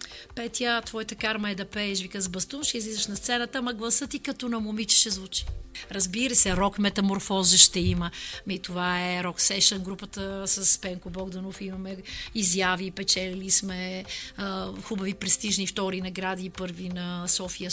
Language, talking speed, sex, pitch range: Bulgarian, 160 wpm, female, 190-230 Hz